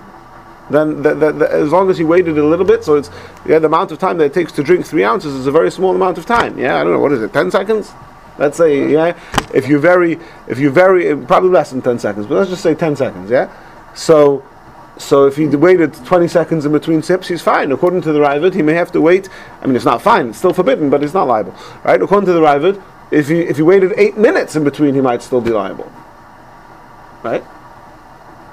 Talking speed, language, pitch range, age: 245 wpm, English, 145-185 Hz, 40-59